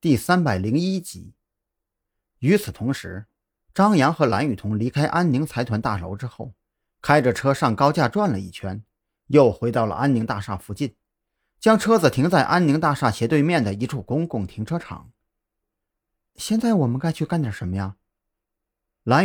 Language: Chinese